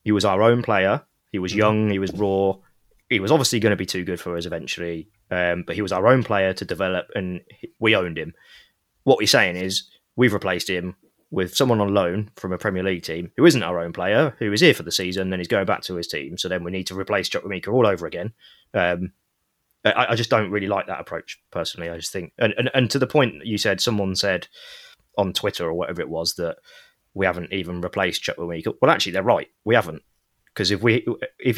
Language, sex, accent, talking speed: English, male, British, 240 wpm